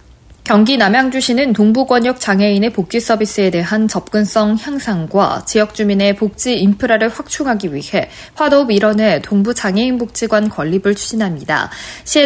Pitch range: 195-245 Hz